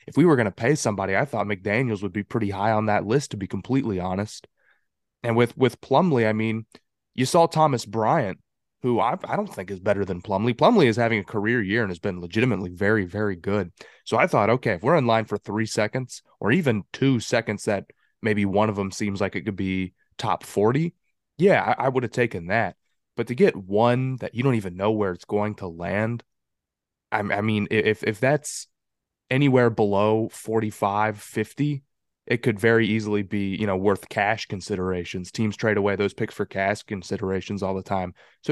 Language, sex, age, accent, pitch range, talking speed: English, male, 20-39, American, 100-115 Hz, 205 wpm